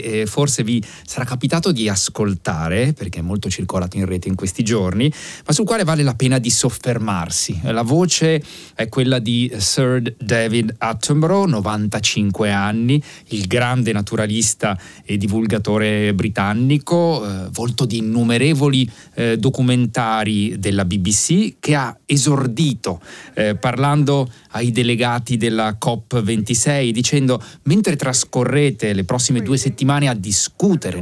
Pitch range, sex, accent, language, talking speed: 105-150 Hz, male, native, Italian, 125 wpm